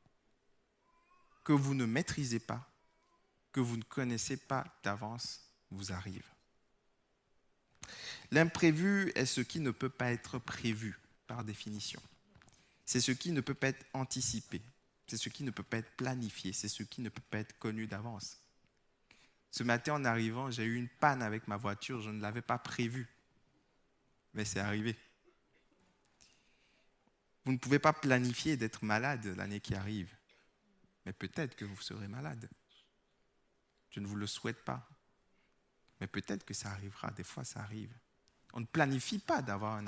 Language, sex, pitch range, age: French, male, 105-130 Hz, 20-39